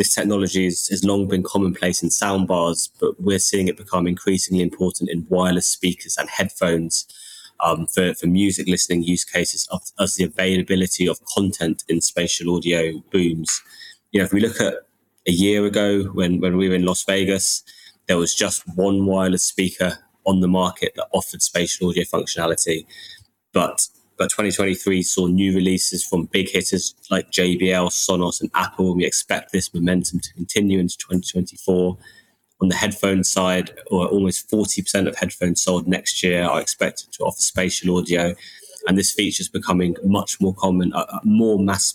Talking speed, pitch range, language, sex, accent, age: 170 wpm, 90-95 Hz, English, male, British, 20-39